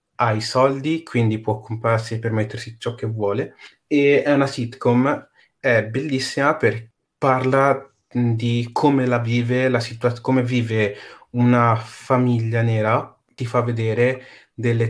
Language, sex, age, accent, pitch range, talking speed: Italian, male, 30-49, native, 110-125 Hz, 135 wpm